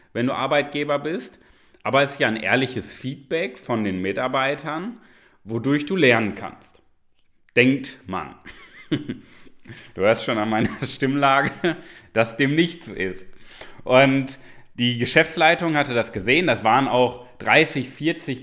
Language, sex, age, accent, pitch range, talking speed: German, male, 30-49, German, 115-150 Hz, 135 wpm